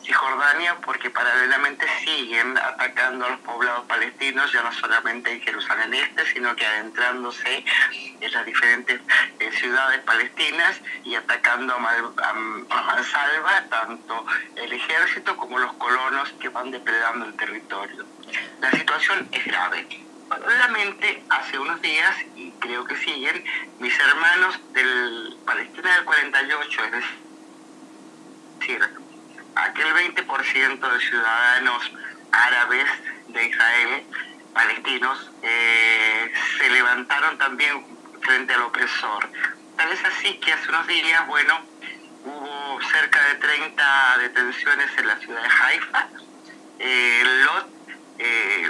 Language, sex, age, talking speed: Spanish, male, 50-69, 120 wpm